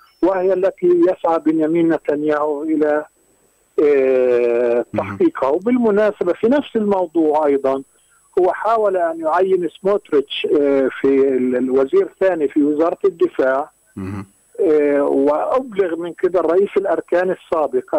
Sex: male